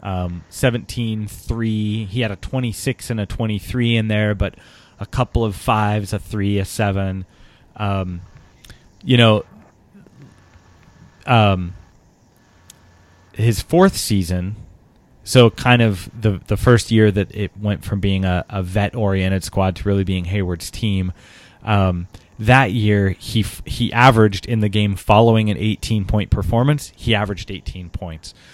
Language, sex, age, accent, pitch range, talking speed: English, male, 20-39, American, 95-110 Hz, 140 wpm